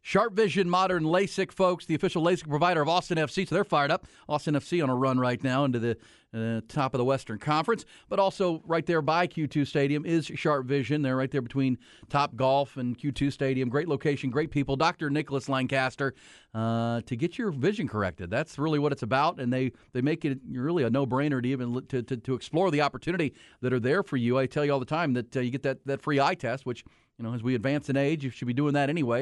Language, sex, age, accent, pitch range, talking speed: English, male, 40-59, American, 125-155 Hz, 245 wpm